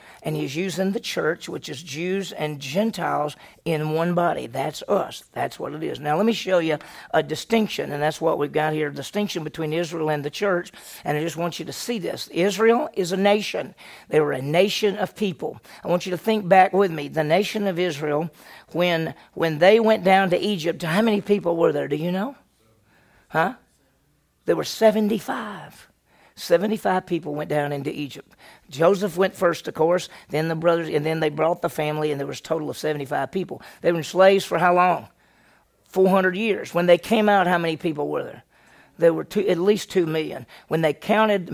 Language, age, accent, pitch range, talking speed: English, 50-69, American, 155-190 Hz, 210 wpm